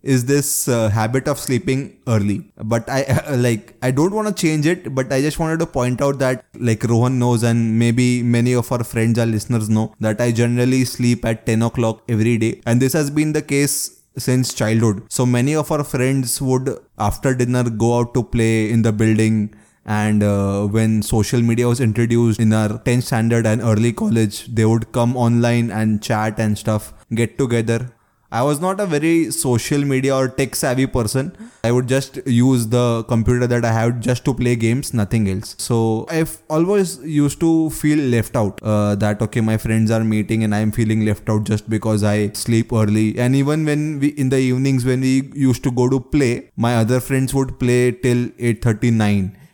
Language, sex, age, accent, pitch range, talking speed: English, male, 20-39, Indian, 115-135 Hz, 200 wpm